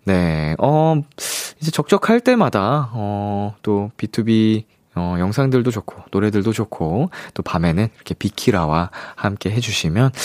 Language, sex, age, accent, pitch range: Korean, male, 20-39, native, 95-145 Hz